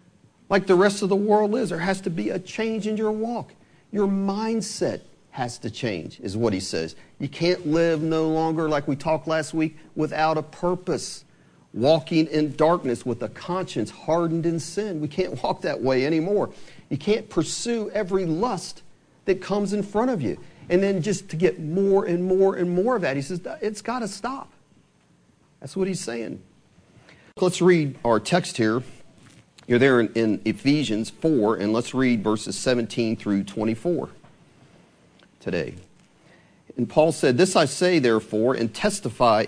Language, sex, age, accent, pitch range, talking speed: English, male, 40-59, American, 120-185 Hz, 170 wpm